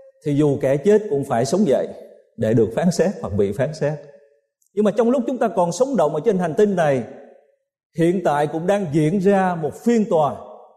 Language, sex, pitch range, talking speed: Vietnamese, male, 175-255 Hz, 215 wpm